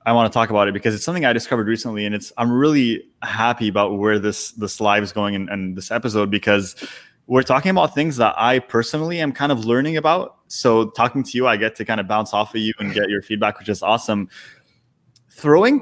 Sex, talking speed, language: male, 230 wpm, English